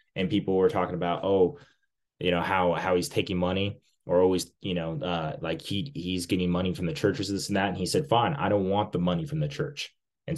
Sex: male